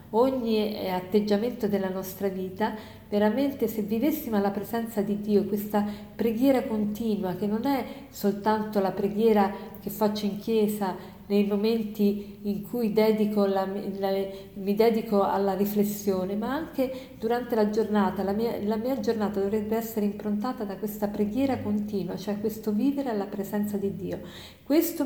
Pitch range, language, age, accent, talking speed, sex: 195-220 Hz, Italian, 50-69, native, 145 wpm, female